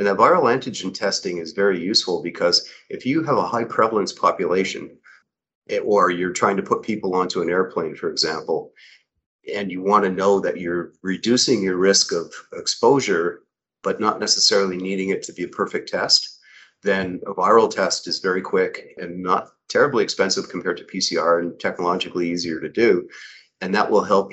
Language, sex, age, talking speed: English, male, 40-59, 180 wpm